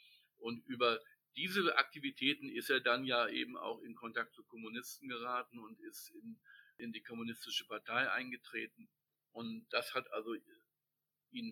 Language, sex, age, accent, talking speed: German, male, 50-69, German, 145 wpm